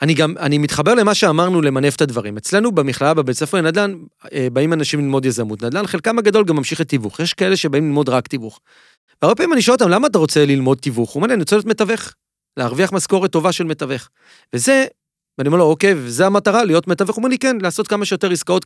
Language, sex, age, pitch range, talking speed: Hebrew, male, 40-59, 140-200 Hz, 225 wpm